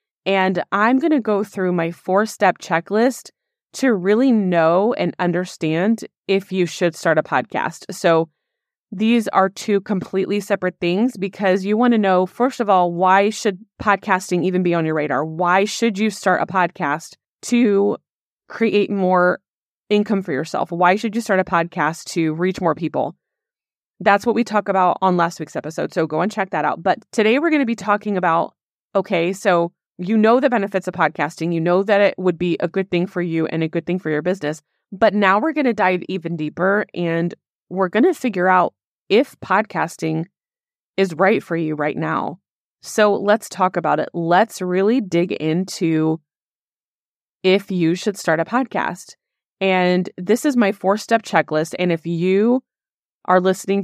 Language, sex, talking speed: English, female, 180 wpm